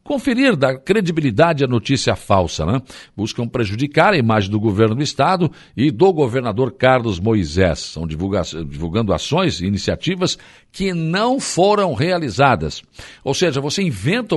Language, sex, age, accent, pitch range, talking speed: Portuguese, male, 60-79, Brazilian, 105-165 Hz, 140 wpm